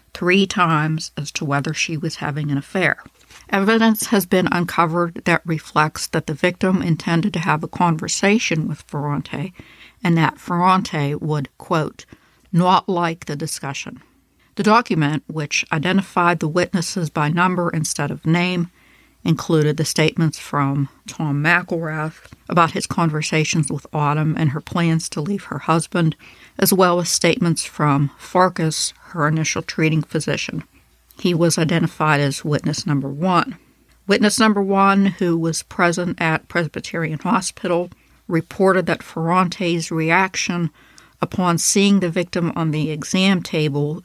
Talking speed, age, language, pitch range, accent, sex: 140 wpm, 60-79, English, 155-180 Hz, American, female